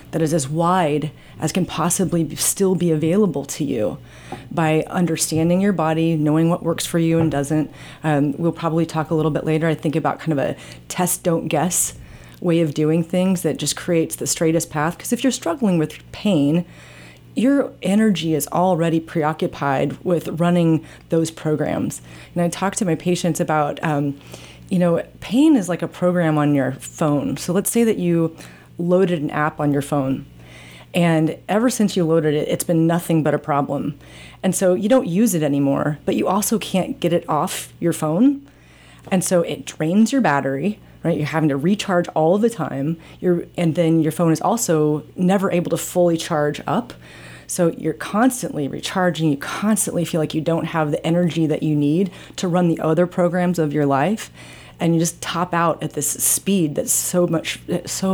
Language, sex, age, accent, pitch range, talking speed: English, female, 30-49, American, 150-180 Hz, 190 wpm